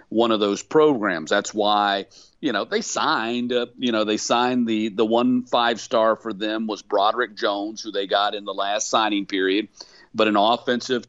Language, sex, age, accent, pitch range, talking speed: English, male, 50-69, American, 100-120 Hz, 195 wpm